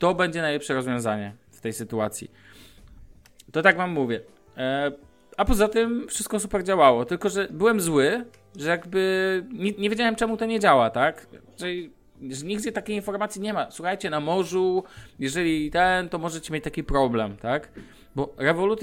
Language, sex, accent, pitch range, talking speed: Polish, male, native, 135-195 Hz, 165 wpm